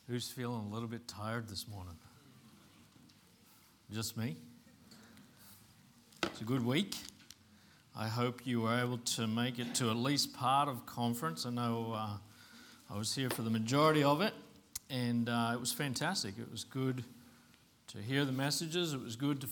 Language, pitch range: English, 120-150 Hz